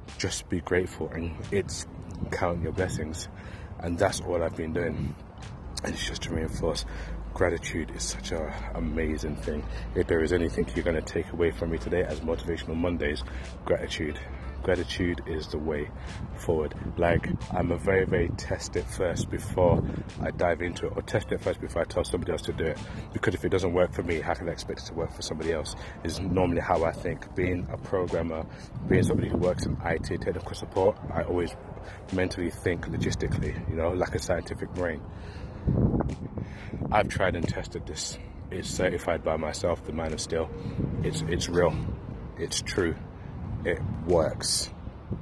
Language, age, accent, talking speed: English, 30-49, British, 180 wpm